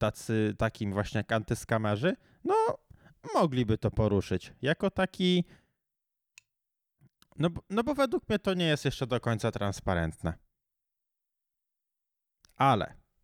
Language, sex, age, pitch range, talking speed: Polish, male, 20-39, 105-140 Hz, 105 wpm